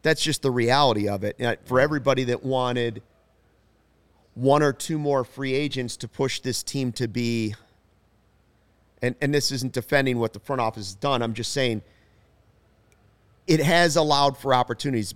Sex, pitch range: male, 110-140 Hz